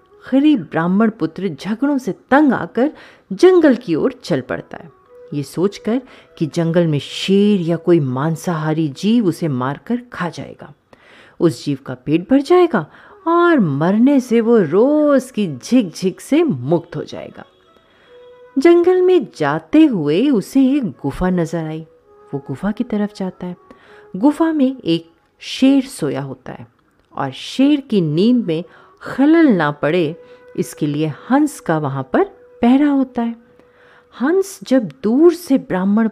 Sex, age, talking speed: female, 30-49, 155 wpm